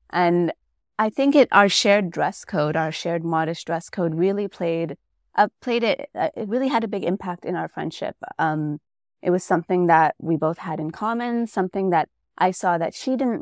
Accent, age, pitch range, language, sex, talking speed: American, 20-39, 165-205 Hz, English, female, 200 wpm